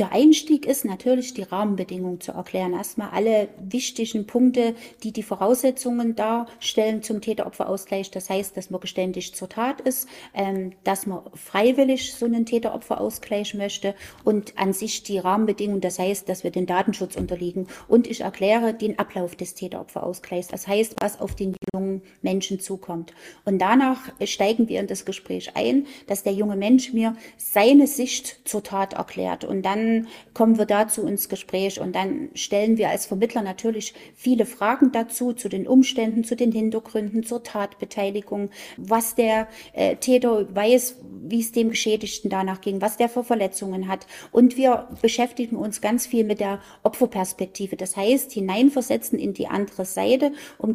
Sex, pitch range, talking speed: female, 195-240 Hz, 160 wpm